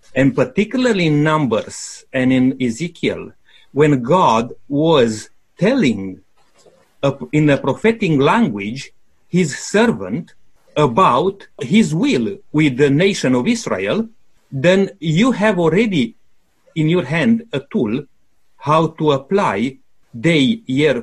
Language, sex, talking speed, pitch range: English, male, 110 wpm, 150-205 Hz